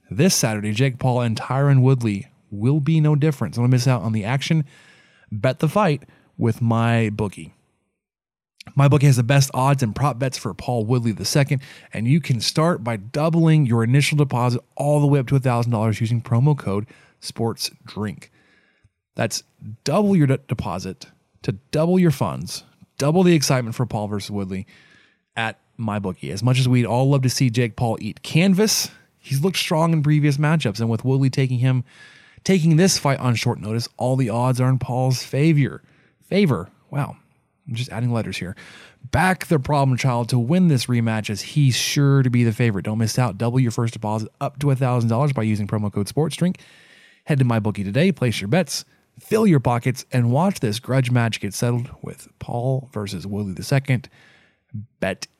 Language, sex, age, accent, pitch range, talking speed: English, male, 30-49, American, 115-145 Hz, 185 wpm